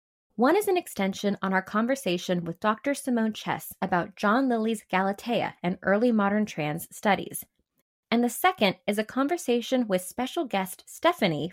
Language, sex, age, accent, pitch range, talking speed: English, female, 20-39, American, 190-265 Hz, 155 wpm